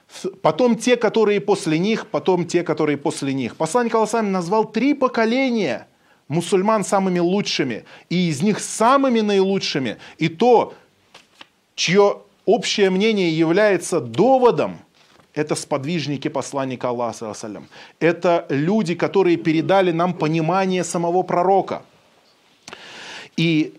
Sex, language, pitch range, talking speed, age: male, Russian, 155-200 Hz, 110 wpm, 30-49